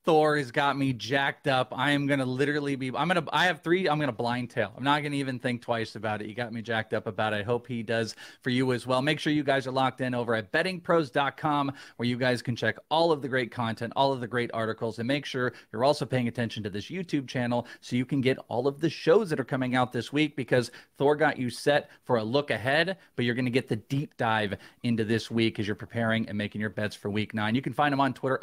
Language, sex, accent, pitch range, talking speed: English, male, American, 120-150 Hz, 280 wpm